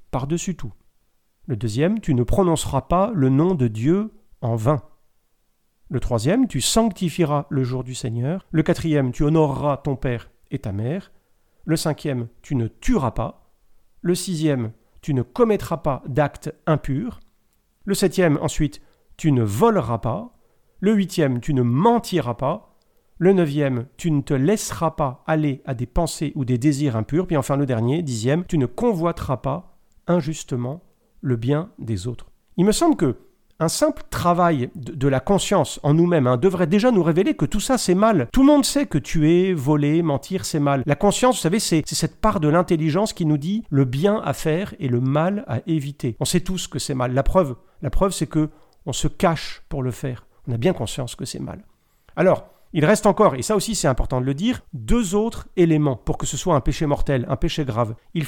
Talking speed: 200 wpm